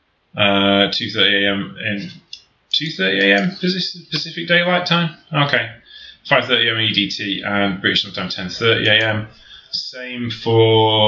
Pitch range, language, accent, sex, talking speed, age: 100-155 Hz, English, British, male, 110 wpm, 20-39